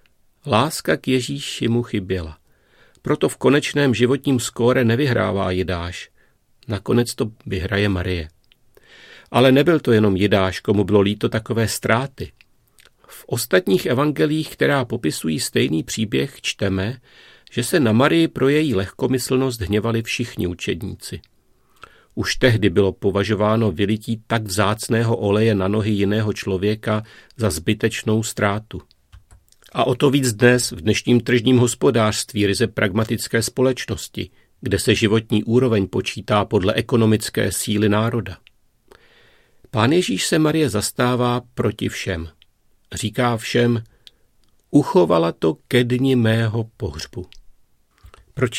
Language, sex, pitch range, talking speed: Czech, male, 100-120 Hz, 120 wpm